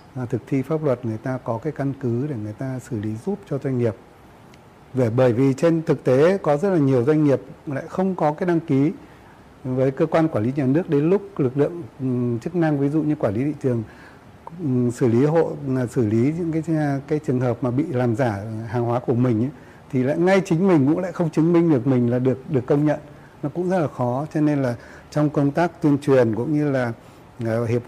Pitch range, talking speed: 120-150 Hz, 235 wpm